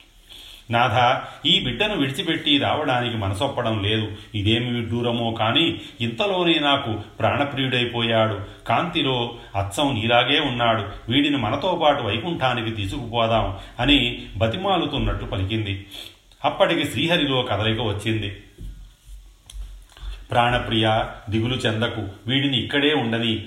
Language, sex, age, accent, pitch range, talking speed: Telugu, male, 40-59, native, 110-135 Hz, 90 wpm